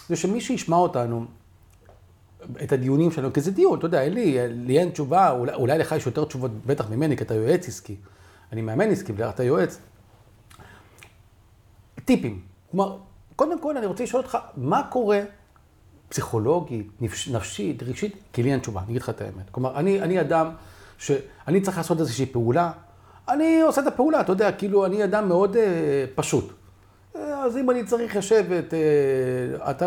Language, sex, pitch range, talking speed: Hebrew, male, 120-195 Hz, 165 wpm